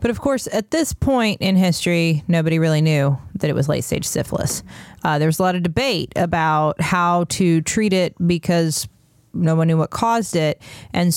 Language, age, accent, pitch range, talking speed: English, 30-49, American, 155-180 Hz, 195 wpm